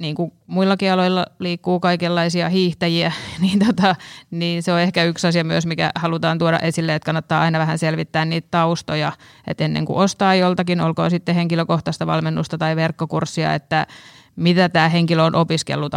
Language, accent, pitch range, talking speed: Finnish, native, 155-170 Hz, 165 wpm